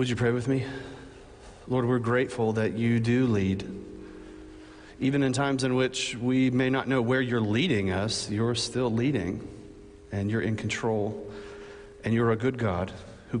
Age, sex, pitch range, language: 40-59, male, 105-135 Hz, English